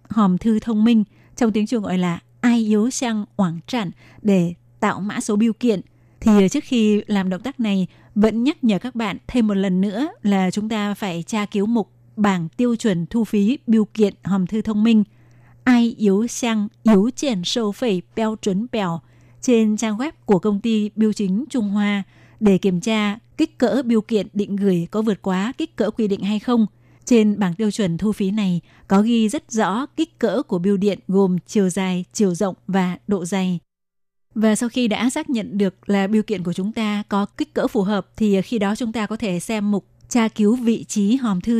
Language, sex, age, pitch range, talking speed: Vietnamese, female, 20-39, 195-225 Hz, 215 wpm